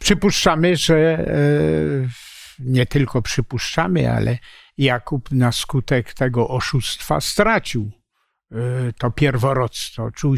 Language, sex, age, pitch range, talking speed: Polish, male, 60-79, 120-155 Hz, 85 wpm